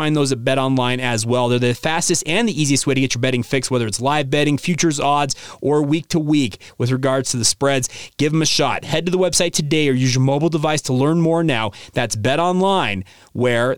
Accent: American